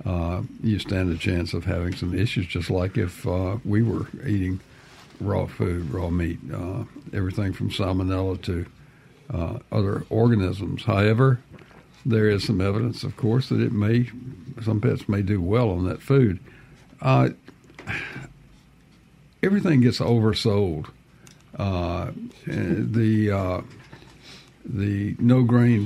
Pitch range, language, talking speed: 95-125 Hz, English, 130 wpm